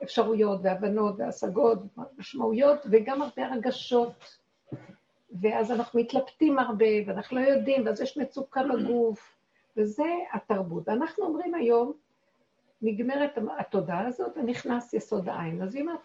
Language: Hebrew